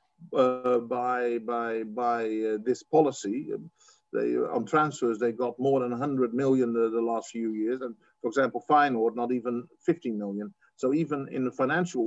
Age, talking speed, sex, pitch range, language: 50-69, 175 wpm, male, 120-140 Hz, English